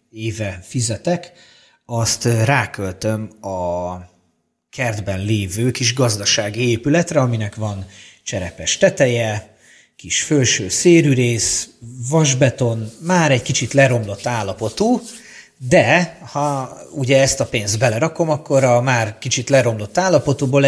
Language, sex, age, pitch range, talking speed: Hungarian, male, 30-49, 110-135 Hz, 105 wpm